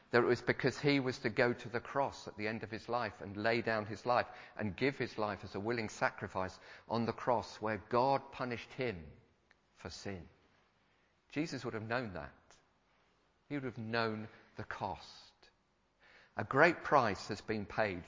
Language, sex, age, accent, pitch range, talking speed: English, male, 50-69, British, 85-115 Hz, 185 wpm